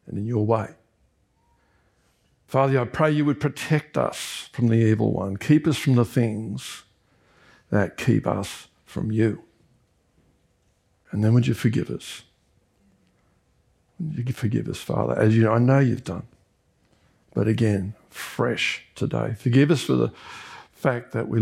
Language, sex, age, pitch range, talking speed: English, male, 60-79, 100-135 Hz, 150 wpm